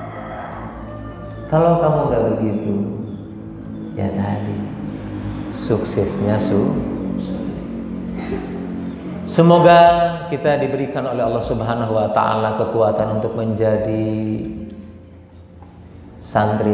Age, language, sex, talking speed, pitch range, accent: 40-59, Indonesian, male, 75 wpm, 105-135 Hz, native